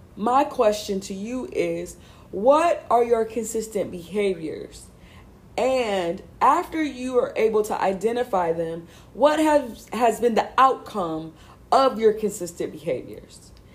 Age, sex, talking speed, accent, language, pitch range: 20-39, female, 120 wpm, American, English, 195-260 Hz